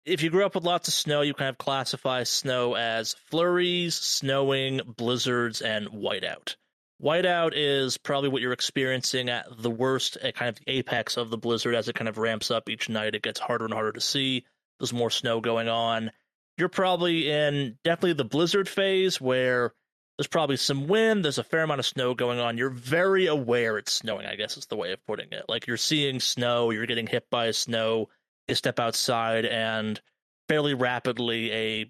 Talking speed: 195 wpm